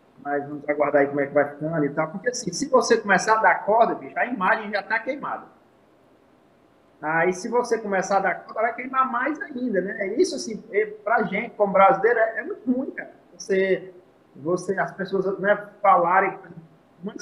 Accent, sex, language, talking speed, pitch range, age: Brazilian, male, Portuguese, 195 wpm, 175-230 Hz, 20-39